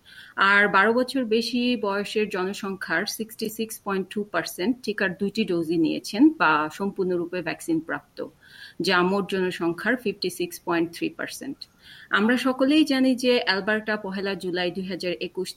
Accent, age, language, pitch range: Indian, 40-59, English, 175-230 Hz